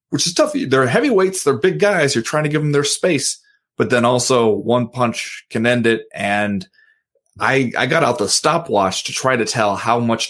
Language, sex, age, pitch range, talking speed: English, male, 30-49, 105-150 Hz, 210 wpm